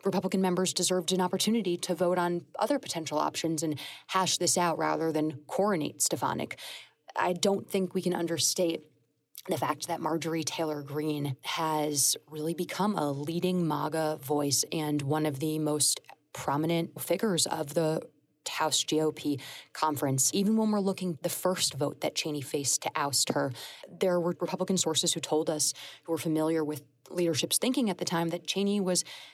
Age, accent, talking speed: 30-49, American, 170 wpm